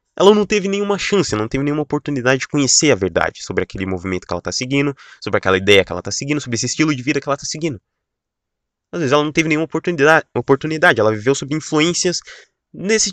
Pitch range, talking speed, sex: 115-165 Hz, 225 wpm, male